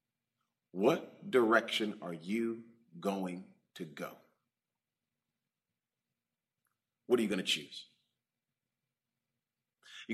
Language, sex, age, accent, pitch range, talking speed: English, male, 40-59, American, 125-180 Hz, 85 wpm